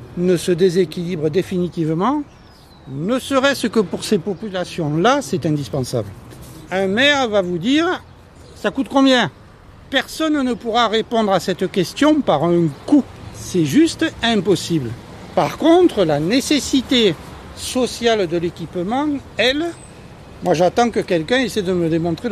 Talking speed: 130 wpm